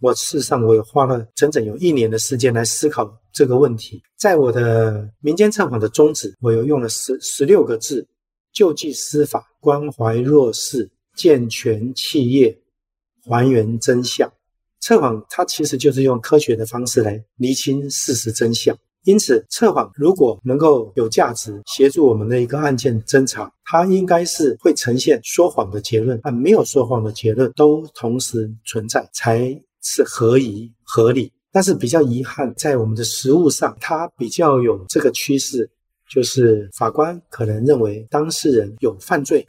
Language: Chinese